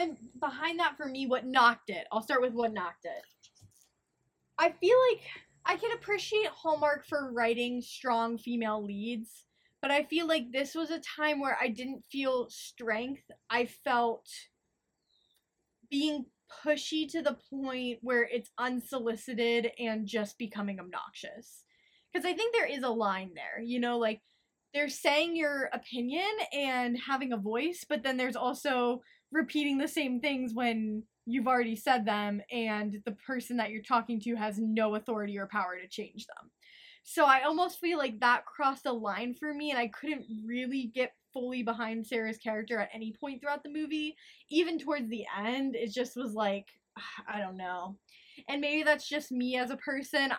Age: 10-29